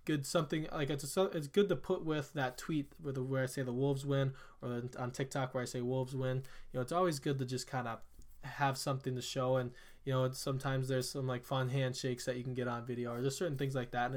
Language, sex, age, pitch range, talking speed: English, male, 20-39, 125-145 Hz, 260 wpm